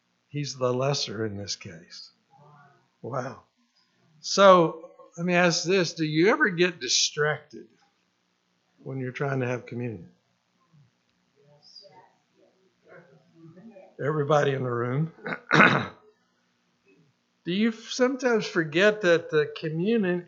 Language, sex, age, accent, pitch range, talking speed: English, male, 60-79, American, 120-175 Hz, 100 wpm